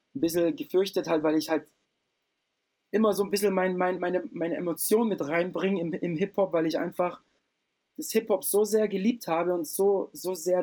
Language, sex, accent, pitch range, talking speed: German, male, German, 150-195 Hz, 185 wpm